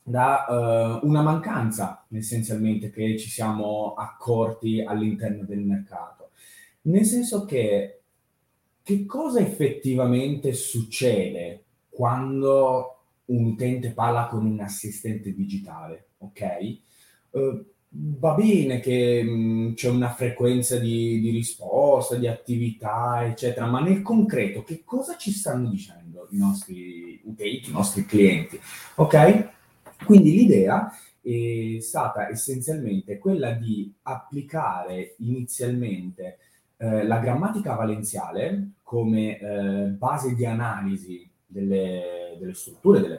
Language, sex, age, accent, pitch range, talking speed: Italian, male, 20-39, native, 105-140 Hz, 105 wpm